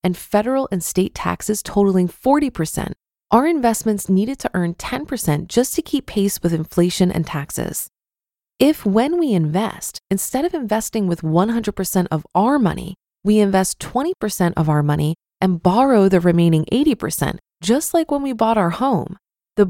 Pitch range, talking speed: 180-255 Hz, 160 wpm